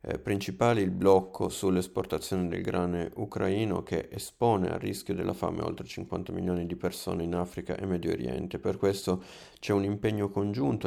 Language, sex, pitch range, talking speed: Italian, male, 90-100 Hz, 160 wpm